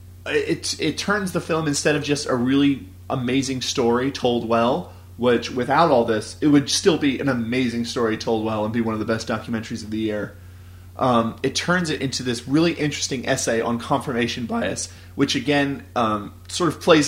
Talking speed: 195 wpm